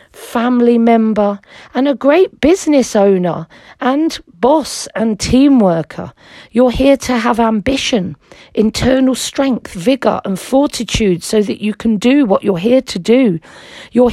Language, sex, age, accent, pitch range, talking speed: English, female, 40-59, British, 200-265 Hz, 140 wpm